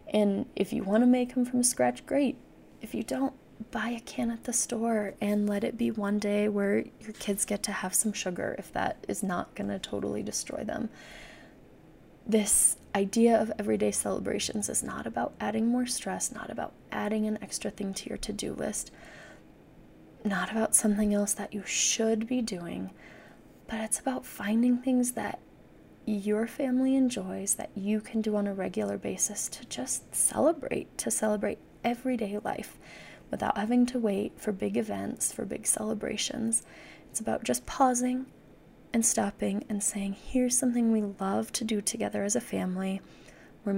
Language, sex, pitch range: English, female, 200-235 Hz